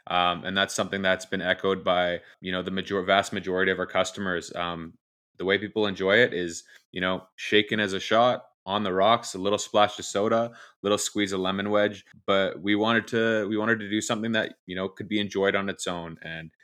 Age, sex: 20-39, male